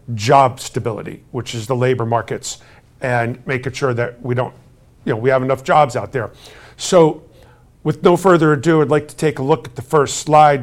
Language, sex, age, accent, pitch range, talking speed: English, male, 50-69, American, 130-160 Hz, 205 wpm